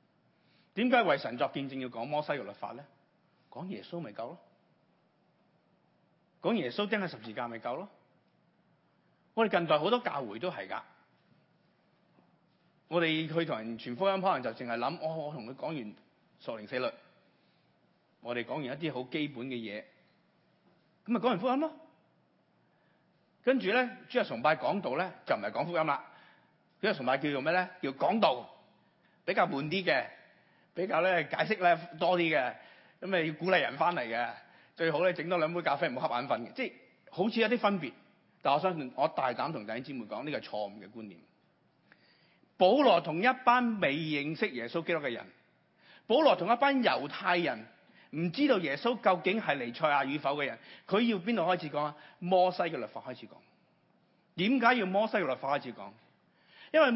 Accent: native